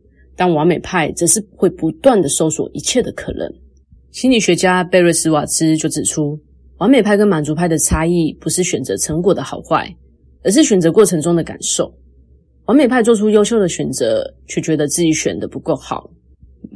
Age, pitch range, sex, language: 20-39, 140-190 Hz, female, Chinese